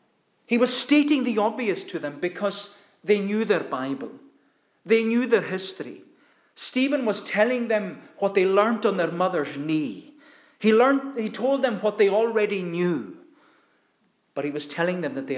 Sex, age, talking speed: male, 40-59, 165 wpm